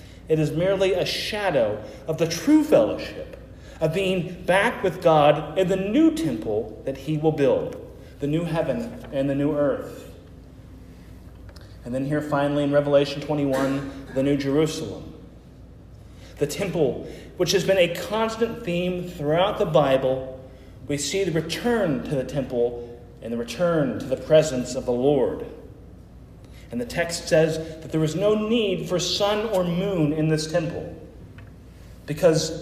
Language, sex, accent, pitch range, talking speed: English, male, American, 140-185 Hz, 155 wpm